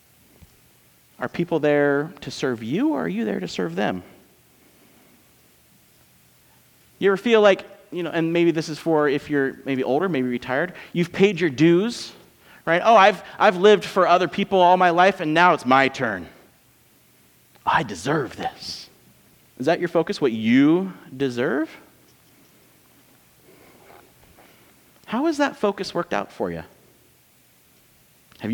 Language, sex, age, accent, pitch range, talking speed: English, male, 30-49, American, 130-190 Hz, 145 wpm